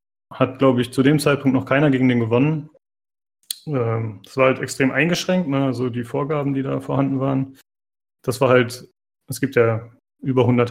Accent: German